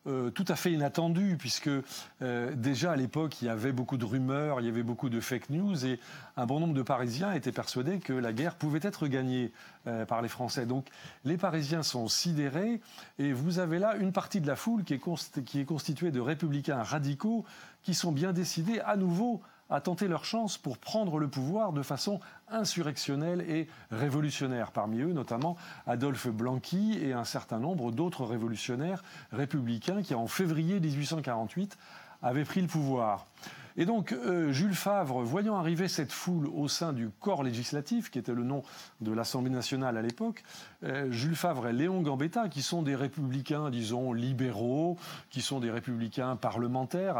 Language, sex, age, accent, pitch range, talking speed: French, male, 40-59, French, 125-180 Hz, 180 wpm